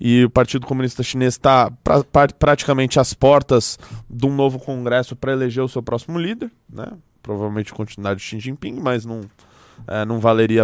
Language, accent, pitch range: Portuguese, Brazilian, 110-145 Hz